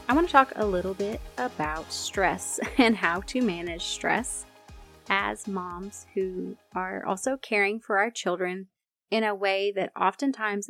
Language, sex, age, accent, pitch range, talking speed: English, female, 30-49, American, 185-225 Hz, 155 wpm